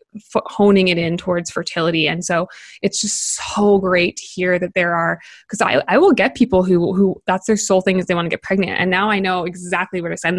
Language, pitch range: English, 180-205 Hz